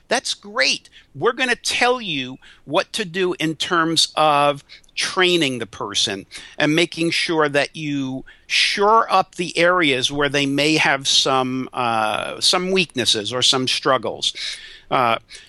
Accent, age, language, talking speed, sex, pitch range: American, 50-69, English, 145 wpm, male, 135-180 Hz